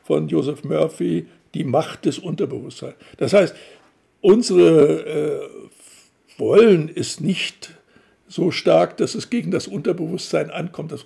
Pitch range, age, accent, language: 180-260 Hz, 60-79, German, German